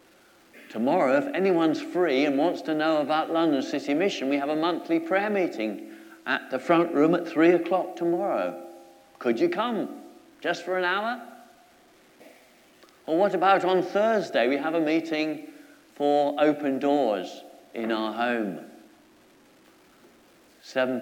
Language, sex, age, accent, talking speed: English, male, 60-79, British, 140 wpm